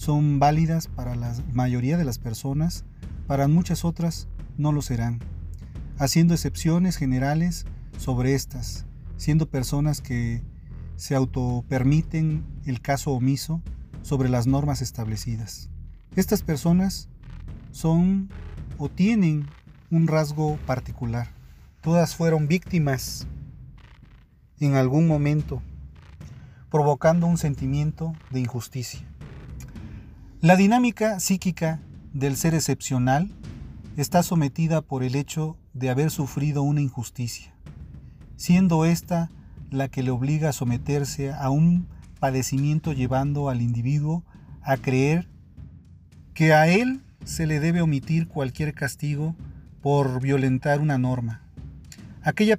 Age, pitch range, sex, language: 40-59, 125-160 Hz, male, Spanish